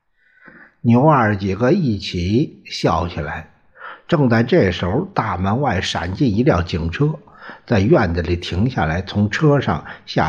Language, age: Chinese, 60-79